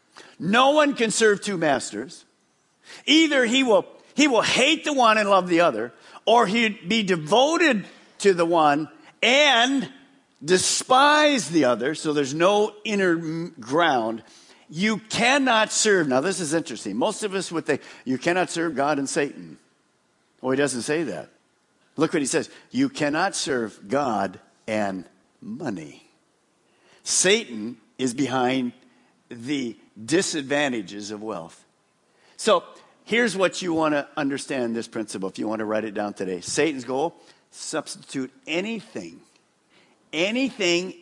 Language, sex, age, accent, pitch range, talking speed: English, male, 50-69, American, 140-230 Hz, 140 wpm